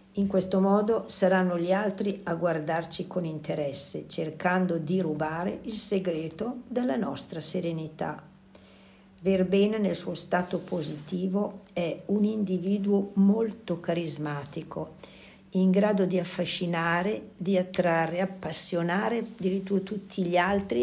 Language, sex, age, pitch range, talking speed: Italian, female, 60-79, 165-200 Hz, 110 wpm